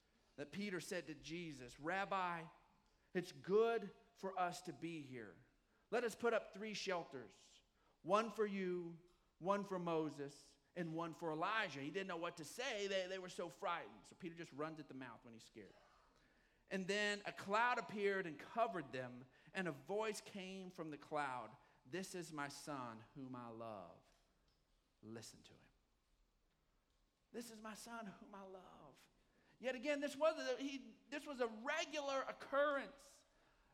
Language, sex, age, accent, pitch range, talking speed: English, male, 40-59, American, 175-285 Hz, 160 wpm